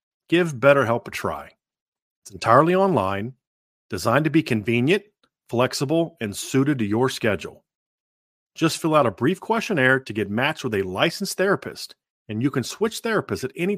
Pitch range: 120-185 Hz